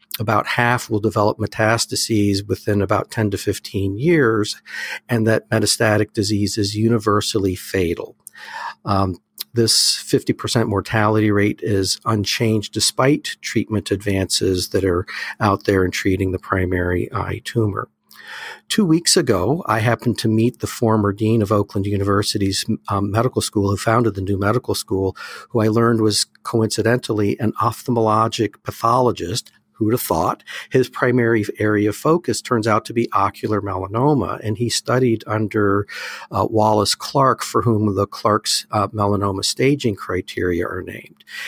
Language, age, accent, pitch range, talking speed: English, 50-69, American, 100-115 Hz, 145 wpm